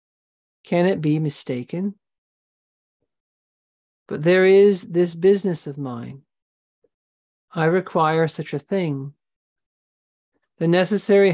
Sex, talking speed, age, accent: male, 95 wpm, 40-59, American